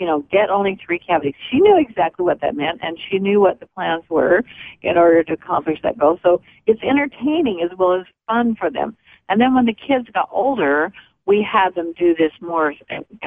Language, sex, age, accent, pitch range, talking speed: English, female, 50-69, American, 155-215 Hz, 215 wpm